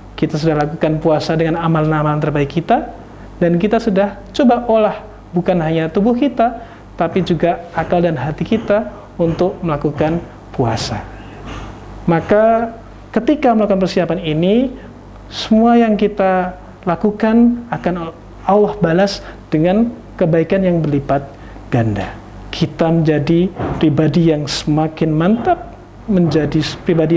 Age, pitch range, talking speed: 40-59, 150-205 Hz, 115 wpm